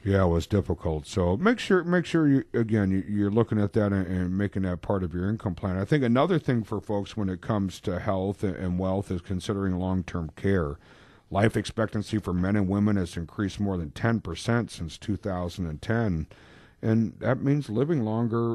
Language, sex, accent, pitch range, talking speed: English, male, American, 95-120 Hz, 205 wpm